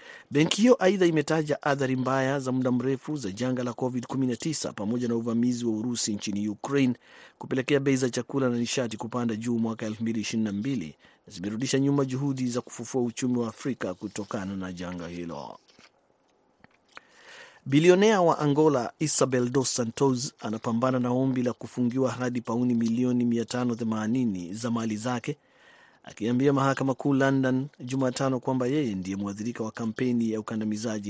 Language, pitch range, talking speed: Swahili, 115-135 Hz, 145 wpm